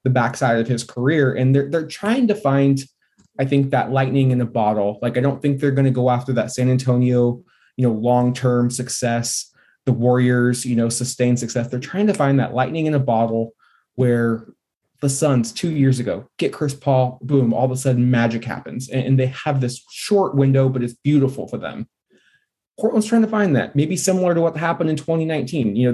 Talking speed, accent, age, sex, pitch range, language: 210 wpm, American, 20-39, male, 120-145 Hz, English